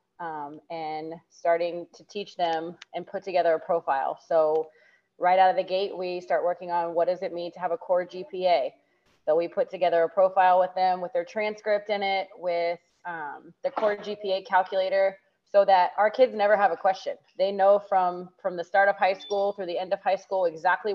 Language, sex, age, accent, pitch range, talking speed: English, female, 30-49, American, 170-195 Hz, 210 wpm